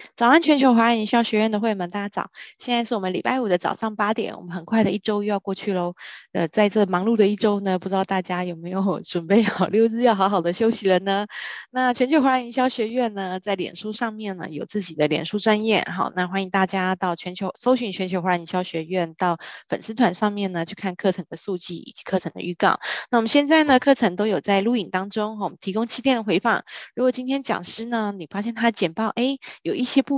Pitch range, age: 180-225 Hz, 20-39